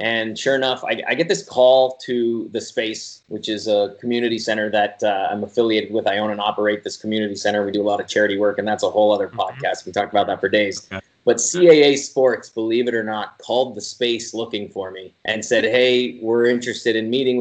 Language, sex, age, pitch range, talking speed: English, male, 30-49, 110-130 Hz, 230 wpm